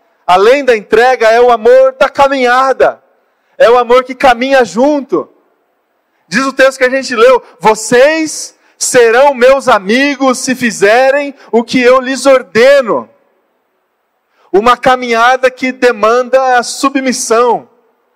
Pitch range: 215-270 Hz